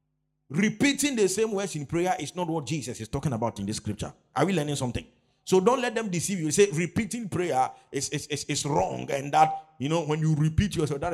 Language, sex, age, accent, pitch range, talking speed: English, male, 50-69, Nigerian, 125-155 Hz, 235 wpm